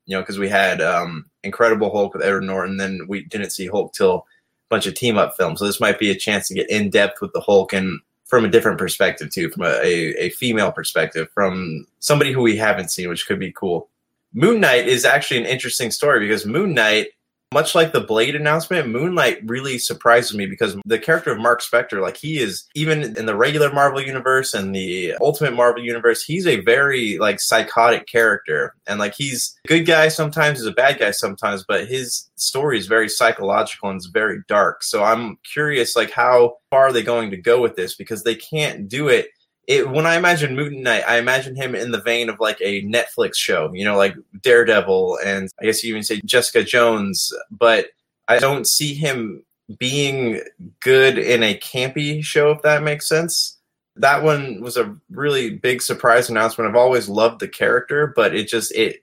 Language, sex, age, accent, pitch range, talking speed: English, male, 20-39, American, 105-150 Hz, 210 wpm